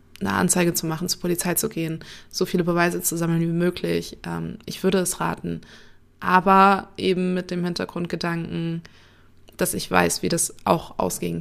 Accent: German